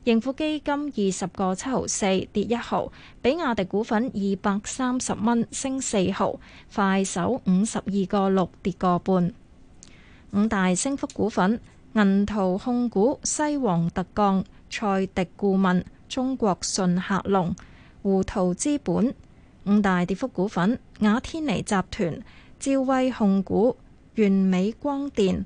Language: Chinese